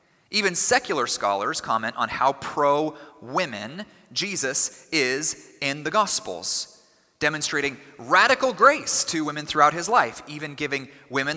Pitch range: 135-185 Hz